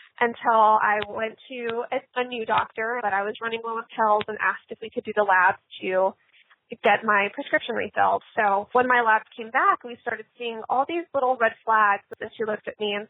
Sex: female